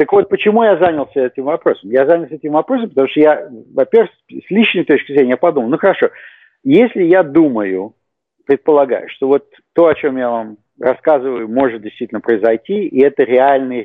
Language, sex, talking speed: English, male, 175 wpm